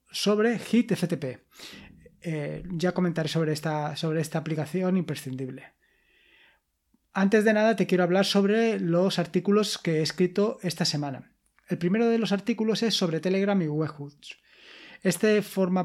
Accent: Spanish